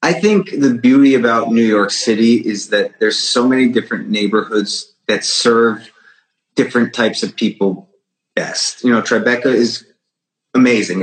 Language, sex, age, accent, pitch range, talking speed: English, male, 30-49, American, 100-125 Hz, 145 wpm